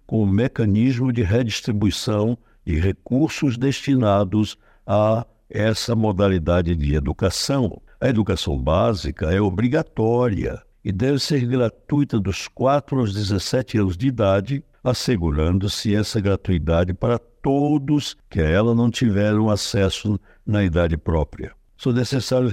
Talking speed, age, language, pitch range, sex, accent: 120 wpm, 60-79, Portuguese, 95-120 Hz, male, Brazilian